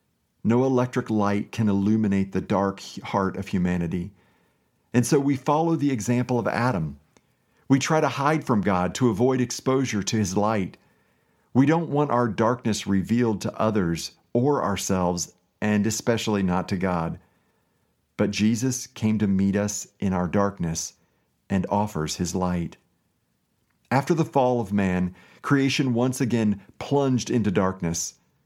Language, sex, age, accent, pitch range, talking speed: English, male, 50-69, American, 95-125 Hz, 145 wpm